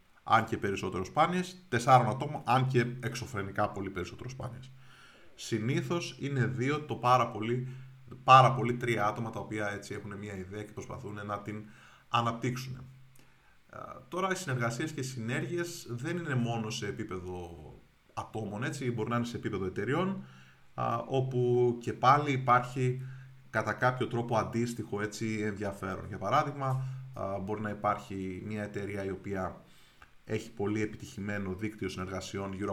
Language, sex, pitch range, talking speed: Greek, male, 100-130 Hz, 140 wpm